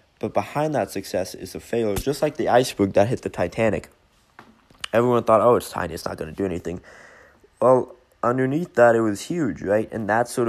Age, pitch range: 20-39, 95-120 Hz